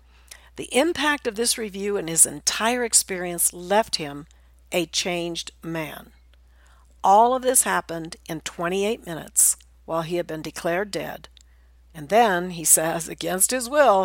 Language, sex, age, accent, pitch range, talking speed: English, female, 60-79, American, 145-195 Hz, 145 wpm